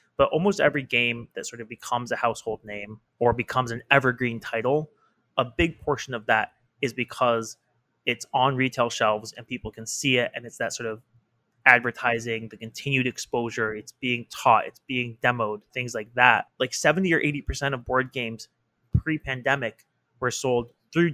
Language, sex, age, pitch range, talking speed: English, male, 20-39, 115-140 Hz, 175 wpm